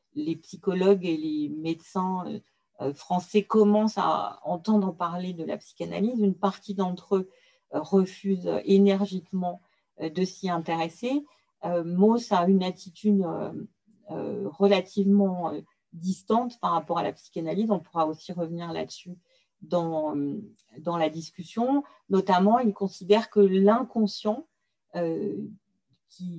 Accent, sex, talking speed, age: French, female, 110 wpm, 50-69